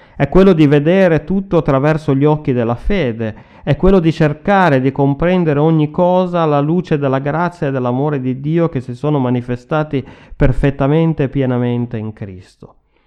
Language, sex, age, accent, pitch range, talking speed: Italian, male, 30-49, native, 120-150 Hz, 160 wpm